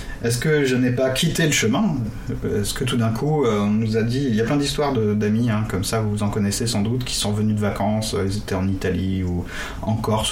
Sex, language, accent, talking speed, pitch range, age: male, French, French, 260 wpm, 105-135 Hz, 30-49